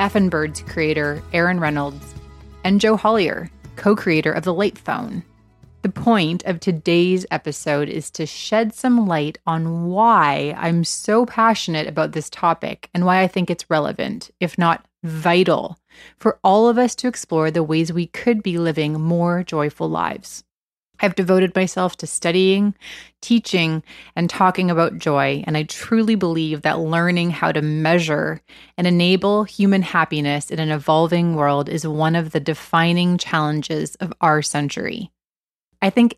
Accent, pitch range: American, 155-205 Hz